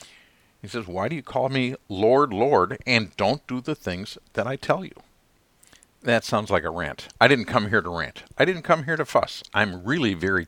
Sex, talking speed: male, 220 wpm